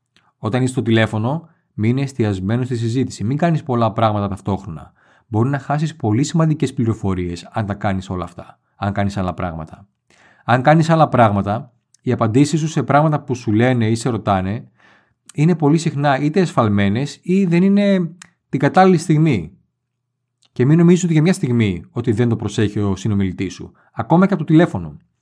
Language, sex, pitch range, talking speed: Greek, male, 110-145 Hz, 175 wpm